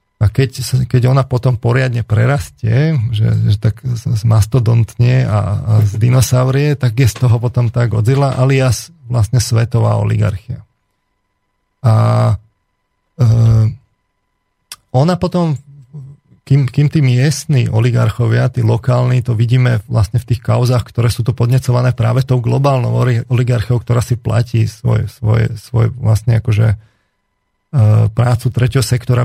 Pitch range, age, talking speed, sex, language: 115-130 Hz, 40-59, 130 wpm, male, Slovak